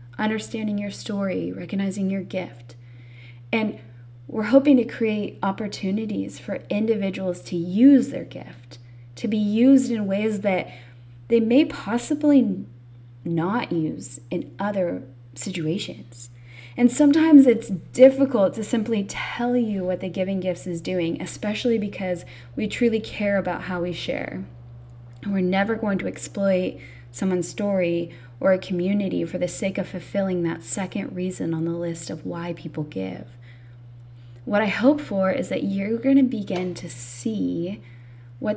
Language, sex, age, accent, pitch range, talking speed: English, female, 20-39, American, 155-220 Hz, 145 wpm